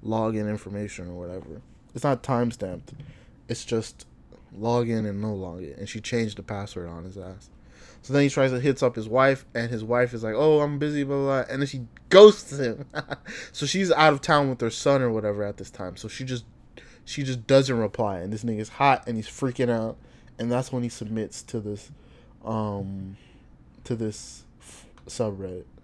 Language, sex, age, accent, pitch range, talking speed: English, male, 20-39, American, 105-130 Hz, 200 wpm